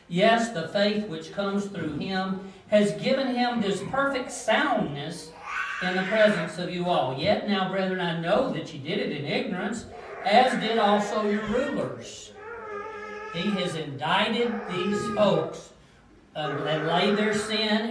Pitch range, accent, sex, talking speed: 165-215 Hz, American, male, 150 wpm